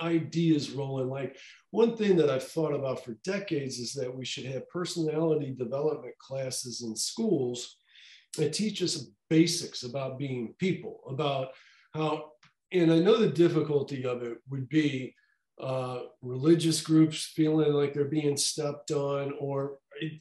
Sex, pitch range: male, 140-170 Hz